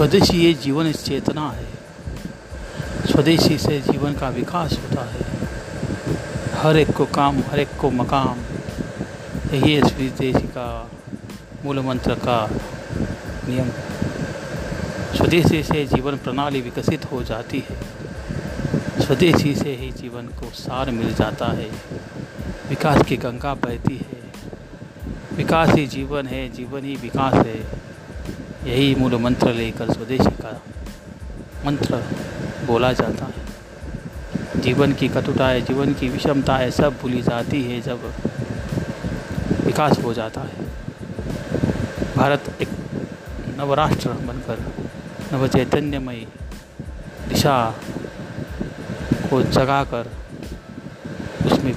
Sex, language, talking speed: male, Hindi, 105 wpm